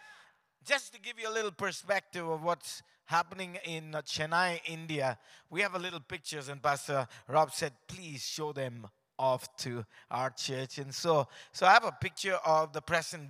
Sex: male